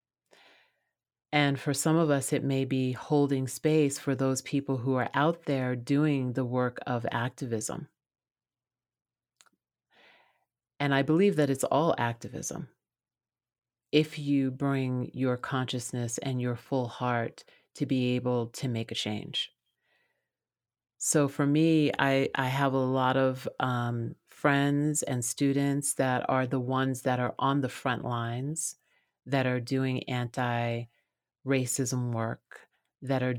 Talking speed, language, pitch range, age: 135 wpm, English, 125-140 Hz, 40-59